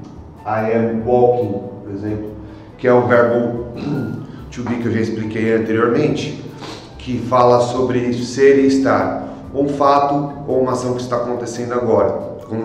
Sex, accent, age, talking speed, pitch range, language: male, Brazilian, 30-49, 150 wpm, 110-130 Hz, Portuguese